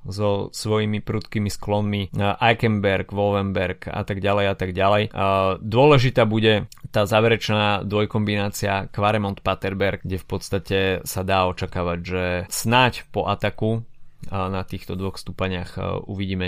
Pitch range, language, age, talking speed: 100-115 Hz, Slovak, 20-39, 120 wpm